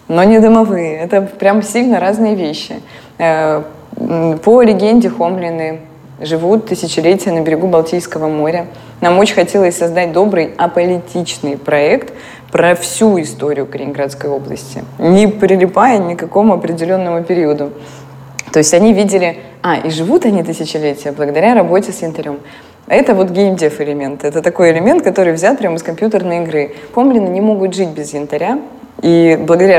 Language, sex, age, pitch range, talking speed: Russian, female, 20-39, 155-195 Hz, 140 wpm